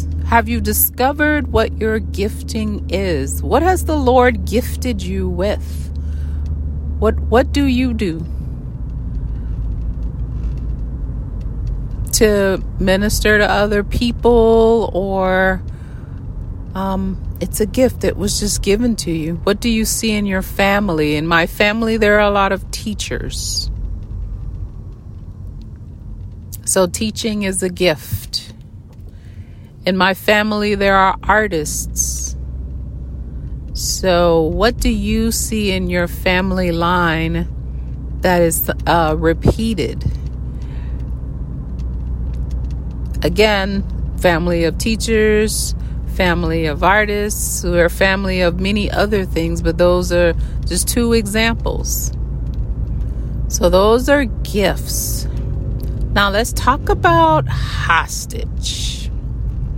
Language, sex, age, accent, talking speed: English, female, 40-59, American, 105 wpm